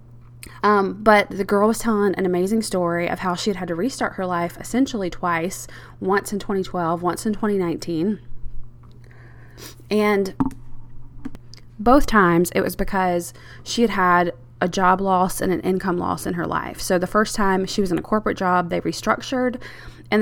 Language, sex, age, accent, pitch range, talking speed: English, female, 20-39, American, 160-205 Hz, 170 wpm